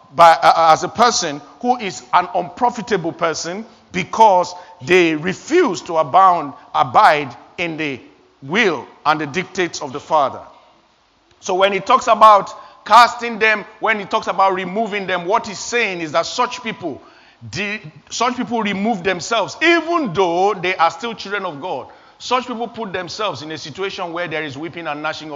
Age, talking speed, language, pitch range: 50-69, 170 wpm, English, 165-215 Hz